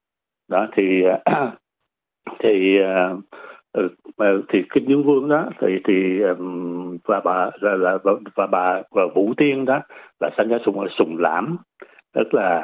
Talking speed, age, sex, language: 140 wpm, 60-79, male, Vietnamese